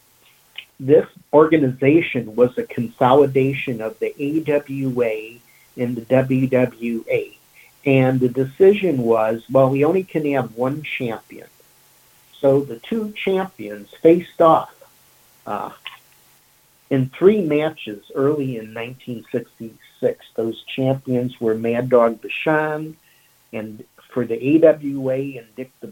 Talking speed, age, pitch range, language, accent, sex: 110 wpm, 50-69, 120-160 Hz, English, American, male